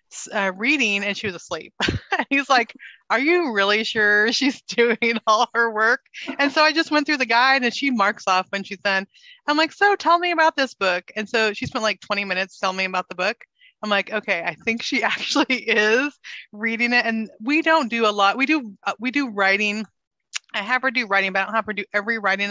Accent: American